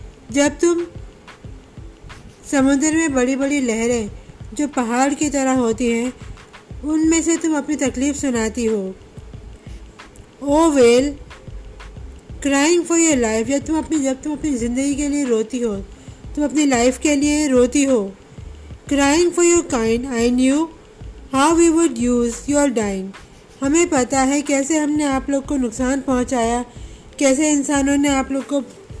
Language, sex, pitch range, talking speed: English, female, 250-295 Hz, 145 wpm